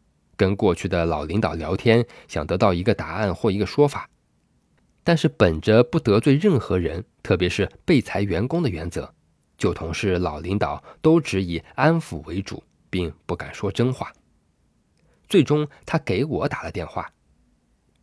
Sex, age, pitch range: male, 20-39, 80-120 Hz